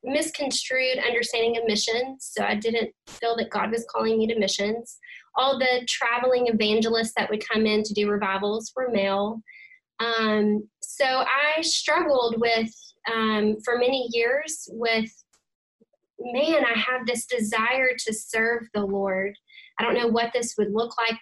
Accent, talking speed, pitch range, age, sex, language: American, 155 wpm, 210-250 Hz, 10-29, female, English